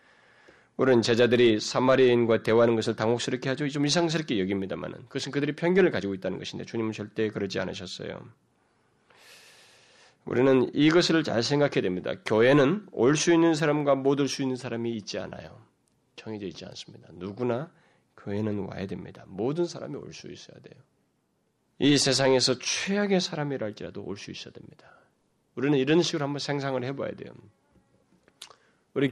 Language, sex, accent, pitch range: Korean, male, native, 110-145 Hz